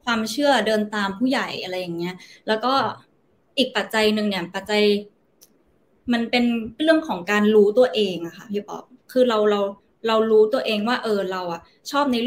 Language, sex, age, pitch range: Thai, female, 20-39, 195-245 Hz